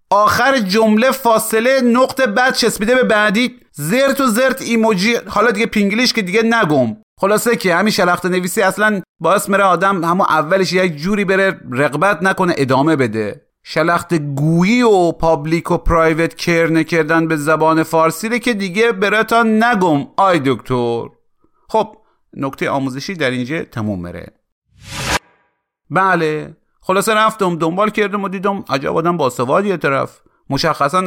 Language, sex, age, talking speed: Persian, male, 40-59, 145 wpm